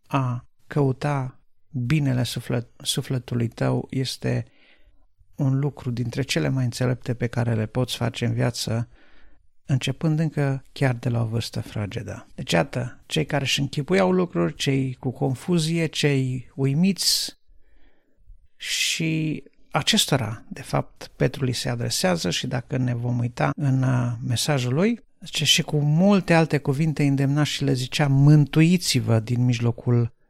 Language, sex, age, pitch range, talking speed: Romanian, male, 50-69, 120-150 Hz, 135 wpm